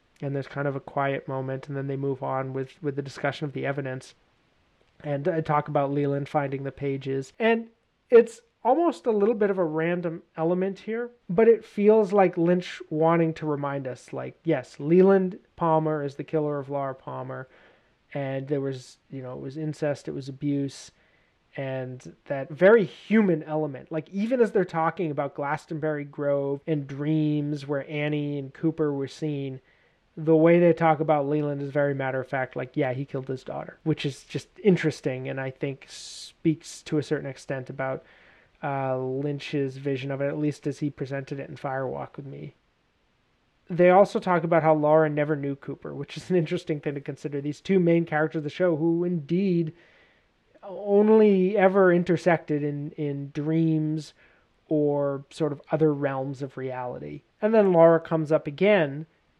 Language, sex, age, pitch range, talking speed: English, male, 30-49, 140-165 Hz, 180 wpm